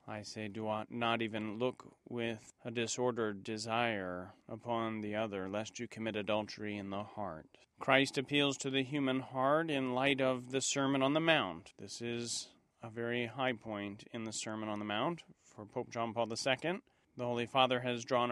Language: English